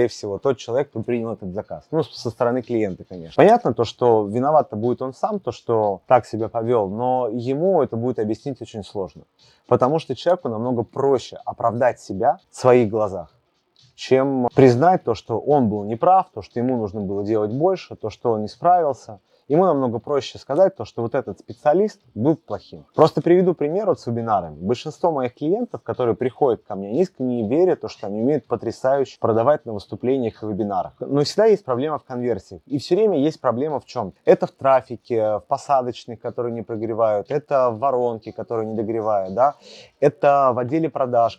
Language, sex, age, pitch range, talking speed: Russian, male, 30-49, 115-150 Hz, 185 wpm